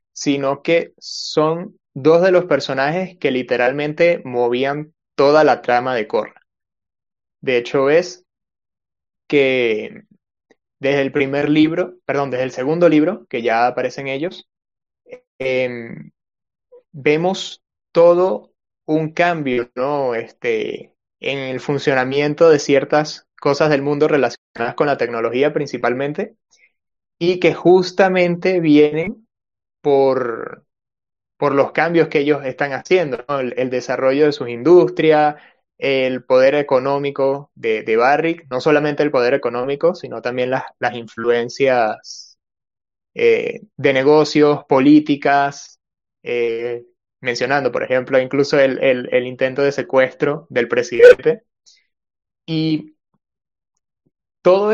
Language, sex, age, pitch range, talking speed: Spanish, male, 20-39, 130-170 Hz, 115 wpm